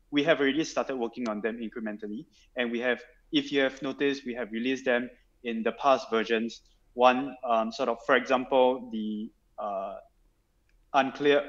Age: 20-39